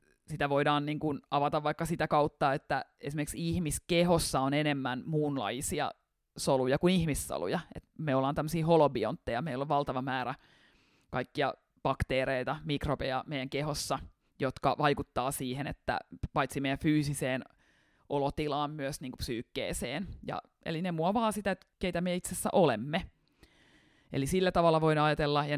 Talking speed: 135 wpm